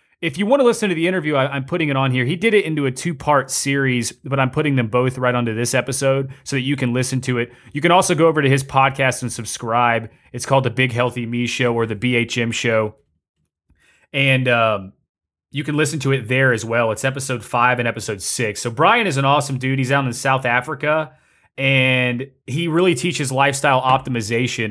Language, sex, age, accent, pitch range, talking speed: English, male, 30-49, American, 115-145 Hz, 220 wpm